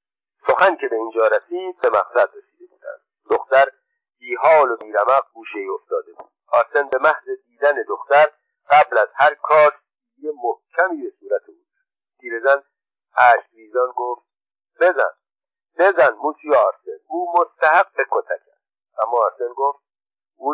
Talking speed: 145 wpm